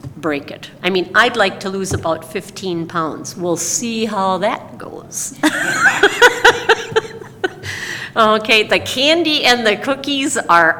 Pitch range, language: 185-235 Hz, English